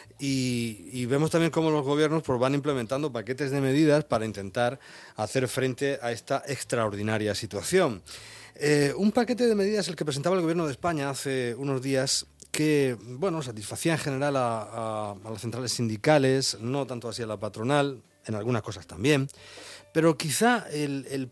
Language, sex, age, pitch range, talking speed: Spanish, male, 40-59, 110-140 Hz, 175 wpm